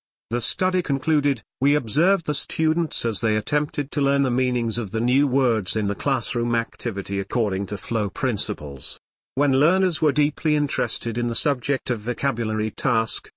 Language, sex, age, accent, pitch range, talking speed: English, male, 50-69, British, 110-140 Hz, 165 wpm